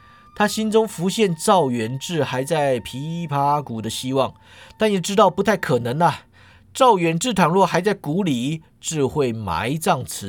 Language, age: Chinese, 50-69